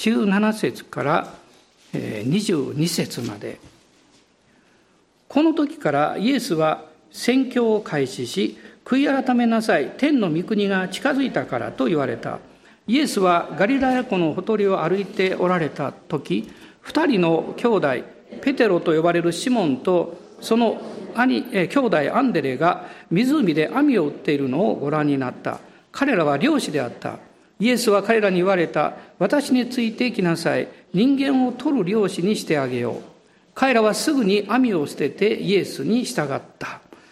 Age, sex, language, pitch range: 50-69, male, Japanese, 175-250 Hz